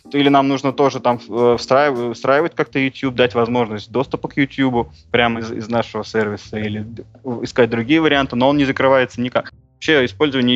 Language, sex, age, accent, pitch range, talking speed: Russian, male, 20-39, native, 115-140 Hz, 165 wpm